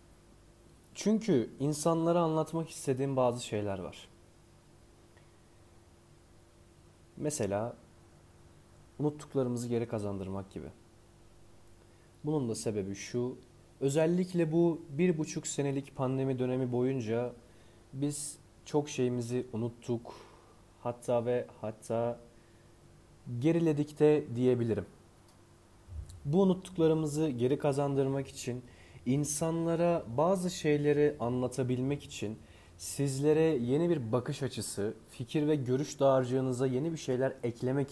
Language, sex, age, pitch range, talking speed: Turkish, male, 30-49, 110-145 Hz, 90 wpm